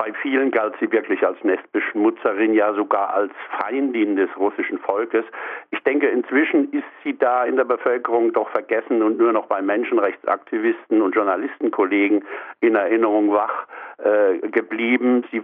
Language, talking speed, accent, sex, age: German, 150 wpm, German, male, 60-79